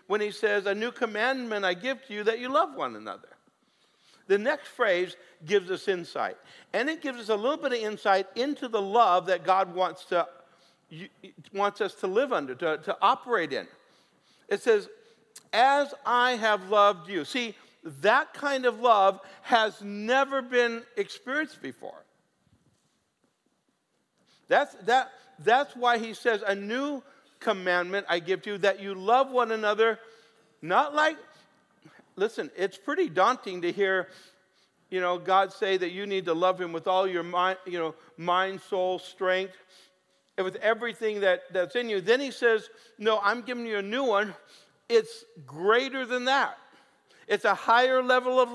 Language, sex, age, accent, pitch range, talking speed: English, male, 60-79, American, 190-250 Hz, 165 wpm